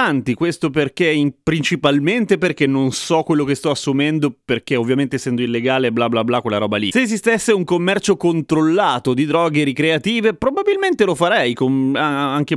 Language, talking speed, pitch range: Italian, 165 wpm, 130-185 Hz